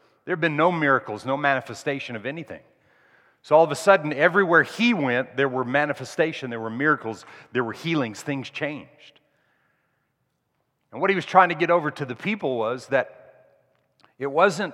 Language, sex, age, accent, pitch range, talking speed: English, male, 40-59, American, 135-170 Hz, 170 wpm